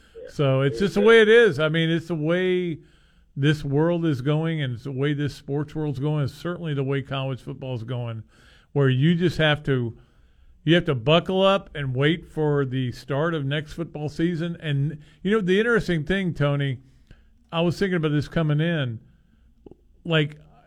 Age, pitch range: 50-69, 130-165 Hz